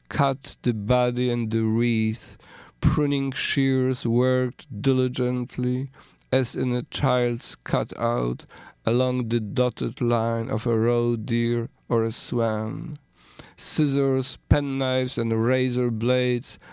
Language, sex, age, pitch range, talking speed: English, male, 50-69, 115-130 Hz, 110 wpm